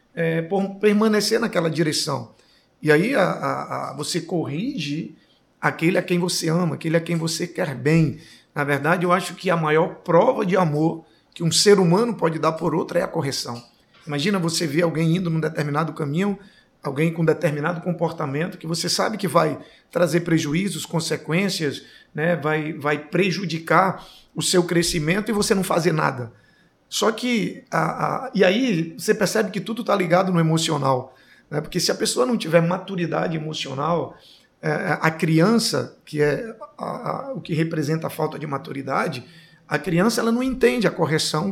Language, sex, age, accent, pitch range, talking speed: Portuguese, male, 50-69, Brazilian, 155-185 Hz, 175 wpm